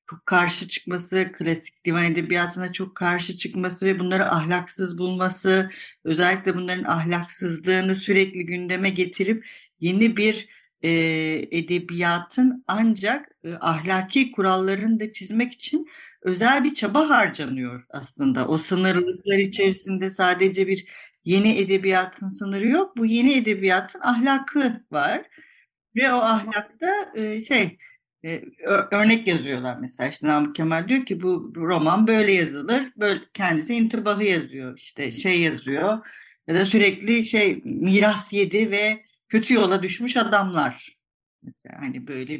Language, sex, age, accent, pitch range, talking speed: Turkish, female, 60-79, native, 165-215 Hz, 115 wpm